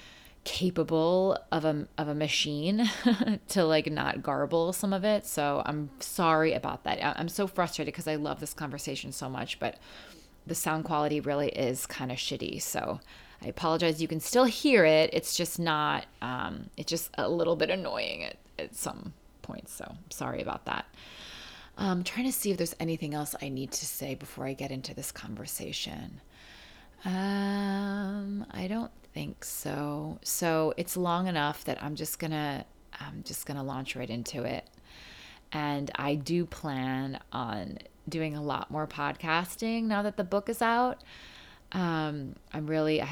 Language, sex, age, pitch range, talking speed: English, female, 30-49, 145-180 Hz, 170 wpm